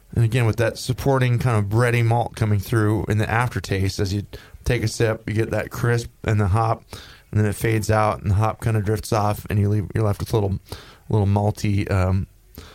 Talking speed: 235 wpm